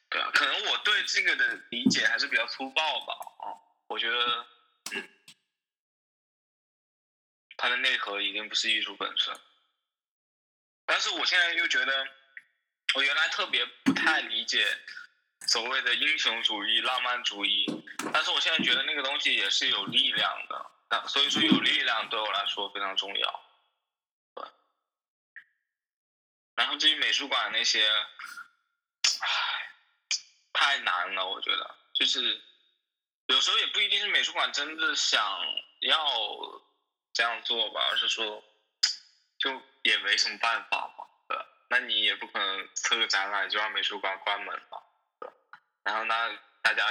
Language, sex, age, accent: Chinese, male, 10-29, native